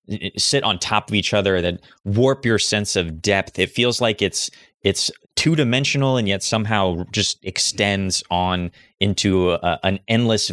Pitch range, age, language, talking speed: 90-110 Hz, 20-39, English, 160 wpm